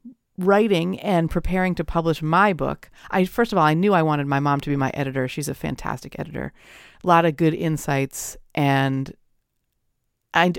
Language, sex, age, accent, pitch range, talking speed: English, female, 40-59, American, 140-180 Hz, 180 wpm